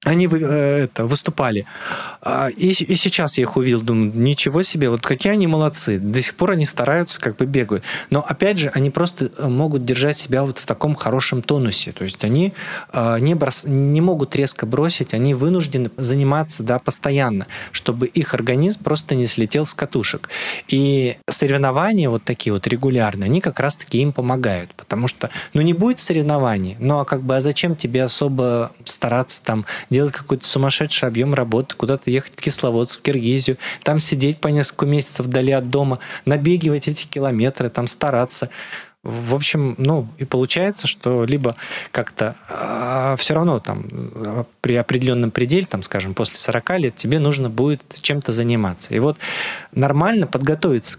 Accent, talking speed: native, 155 wpm